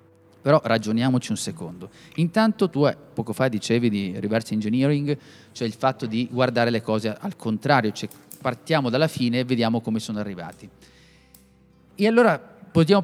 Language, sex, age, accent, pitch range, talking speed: Italian, male, 30-49, native, 110-150 Hz, 150 wpm